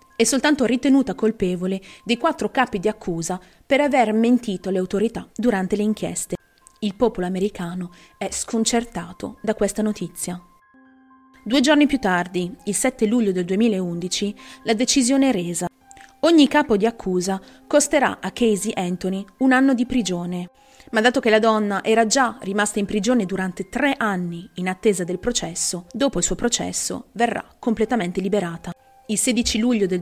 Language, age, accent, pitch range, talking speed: Italian, 30-49, native, 185-250 Hz, 155 wpm